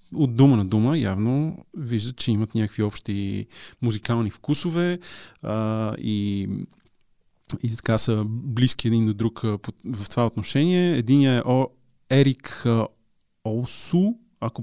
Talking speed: 125 wpm